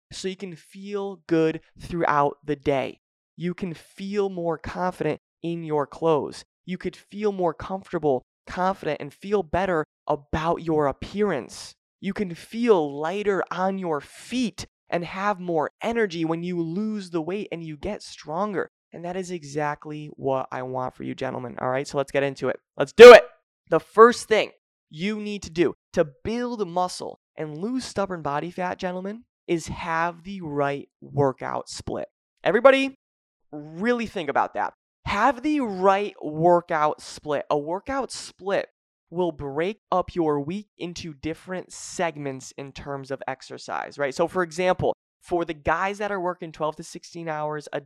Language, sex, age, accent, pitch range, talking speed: English, male, 20-39, American, 150-195 Hz, 165 wpm